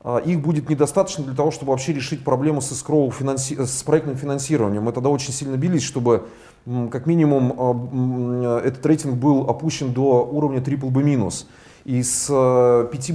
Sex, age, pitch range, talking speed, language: male, 30-49, 125-150 Hz, 145 wpm, Russian